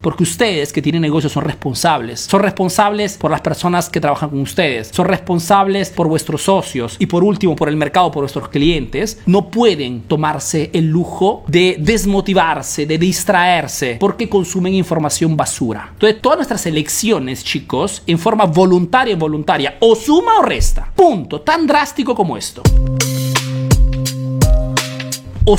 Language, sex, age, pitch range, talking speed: Spanish, male, 40-59, 155-210 Hz, 145 wpm